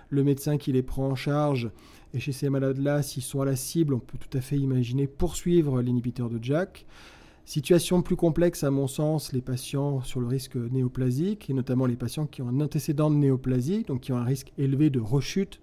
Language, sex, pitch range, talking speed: English, male, 125-150 Hz, 215 wpm